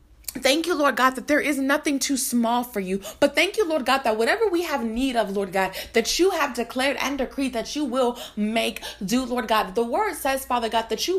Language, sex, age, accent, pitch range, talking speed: English, female, 20-39, American, 220-300 Hz, 240 wpm